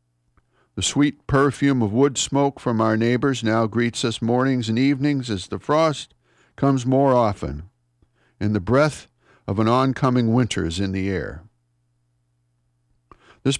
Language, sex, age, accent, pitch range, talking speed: English, male, 60-79, American, 100-130 Hz, 145 wpm